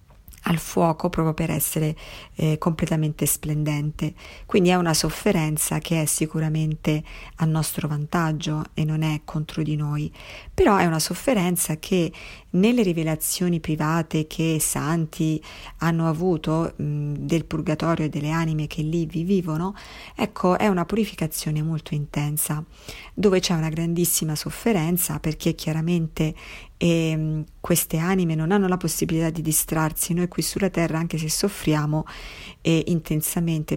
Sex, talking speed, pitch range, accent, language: female, 135 wpm, 155-175 Hz, native, Italian